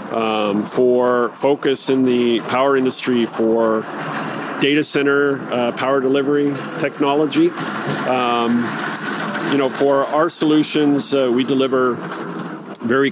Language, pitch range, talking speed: English, 105-125 Hz, 110 wpm